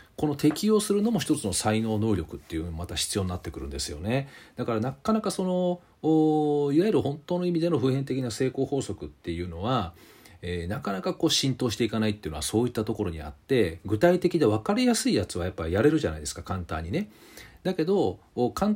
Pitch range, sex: 100-165 Hz, male